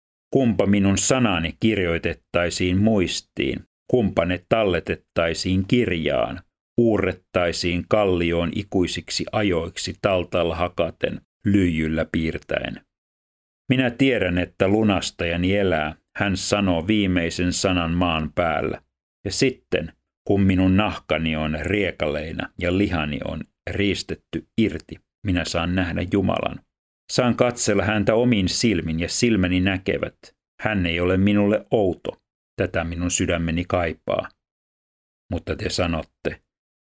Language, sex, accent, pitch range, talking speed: Finnish, male, native, 85-100 Hz, 105 wpm